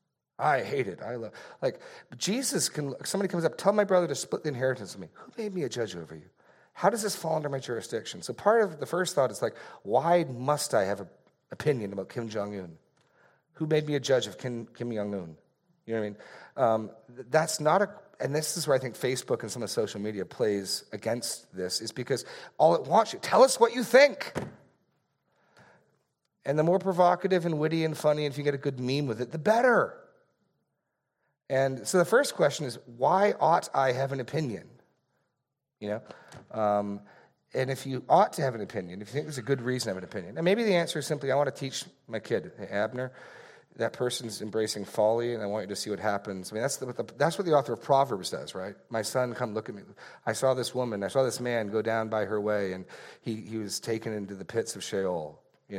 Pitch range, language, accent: 110-160 Hz, English, American